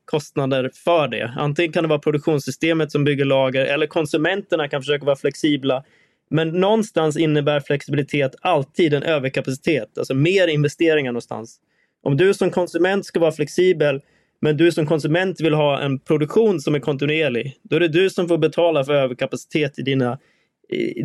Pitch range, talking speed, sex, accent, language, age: 140-165 Hz, 165 wpm, male, native, Swedish, 20-39